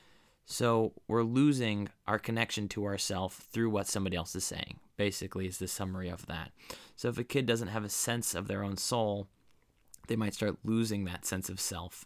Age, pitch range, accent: 20-39, 95-110 Hz, American